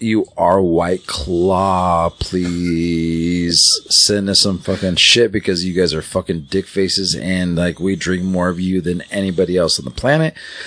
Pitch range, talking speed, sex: 90-120 Hz, 170 wpm, male